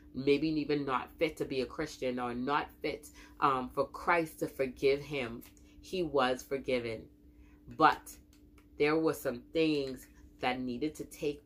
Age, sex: 30-49, female